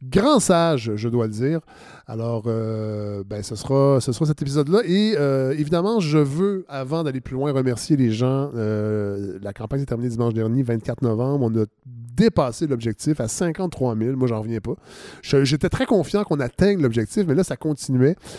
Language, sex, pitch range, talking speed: French, male, 120-160 Hz, 200 wpm